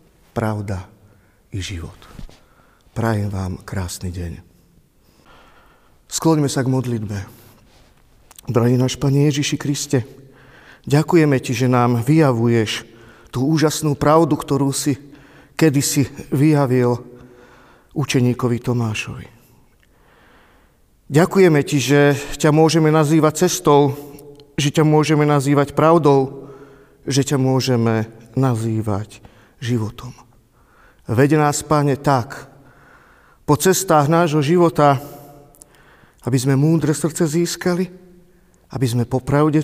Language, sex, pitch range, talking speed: Slovak, male, 115-150 Hz, 95 wpm